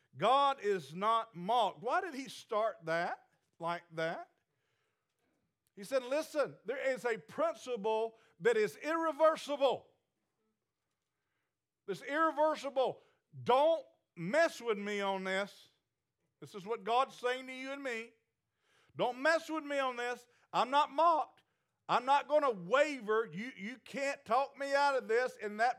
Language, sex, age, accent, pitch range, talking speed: English, male, 50-69, American, 190-270 Hz, 140 wpm